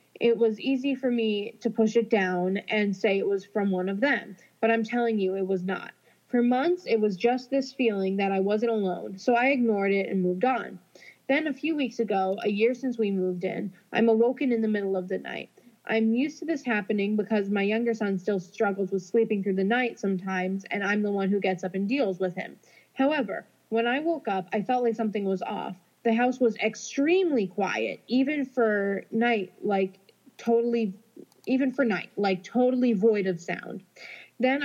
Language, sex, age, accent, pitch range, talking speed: English, female, 20-39, American, 195-240 Hz, 205 wpm